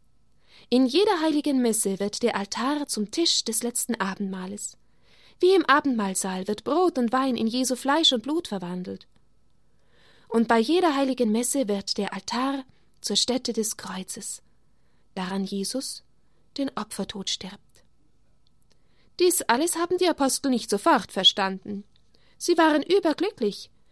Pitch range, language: 200-260 Hz, German